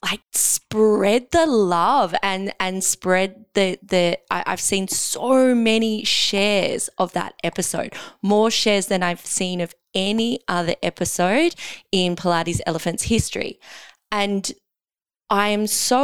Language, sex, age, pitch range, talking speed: English, female, 20-39, 165-205 Hz, 130 wpm